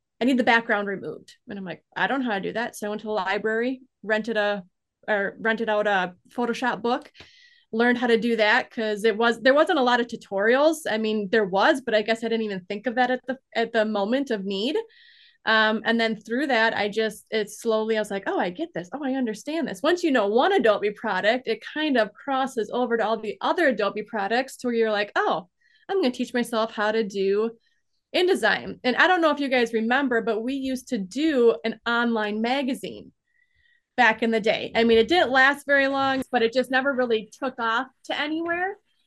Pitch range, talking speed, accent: 220-260 Hz, 225 wpm, American